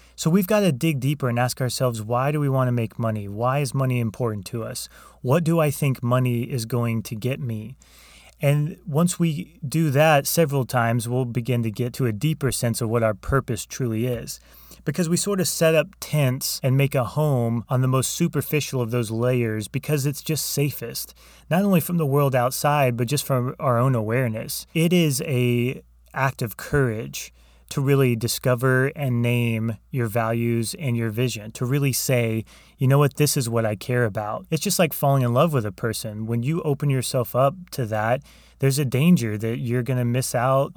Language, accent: English, American